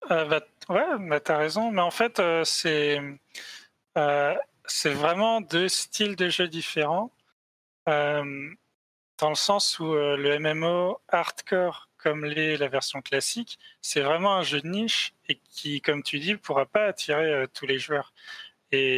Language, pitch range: French, 135-165 Hz